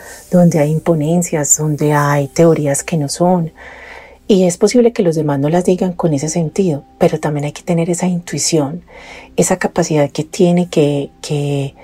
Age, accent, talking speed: 40-59, Colombian, 170 wpm